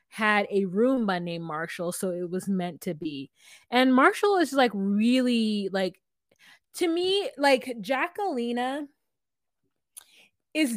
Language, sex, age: English, female, 20-39